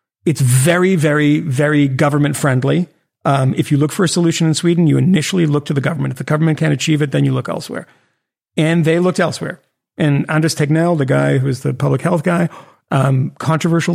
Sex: male